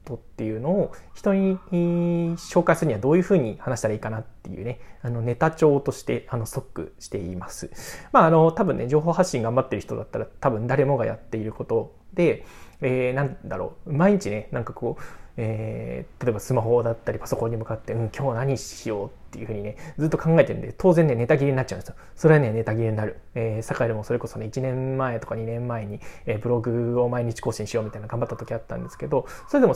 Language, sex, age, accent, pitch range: Japanese, male, 20-39, native, 115-170 Hz